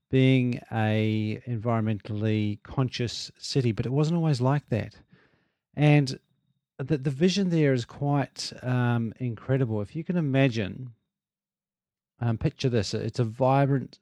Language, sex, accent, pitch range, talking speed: English, male, Australian, 110-135 Hz, 130 wpm